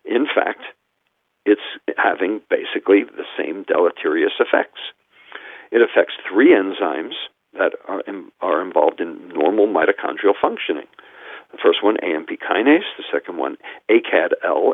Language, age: English, 50-69